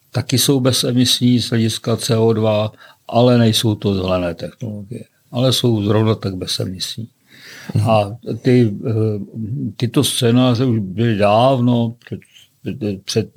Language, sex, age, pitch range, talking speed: Czech, male, 50-69, 110-125 Hz, 110 wpm